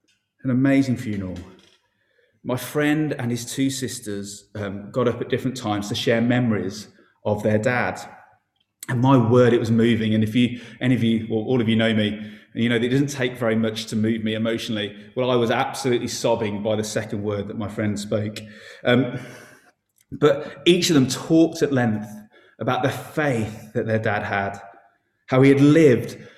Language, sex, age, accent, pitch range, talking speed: English, male, 30-49, British, 110-135 Hz, 190 wpm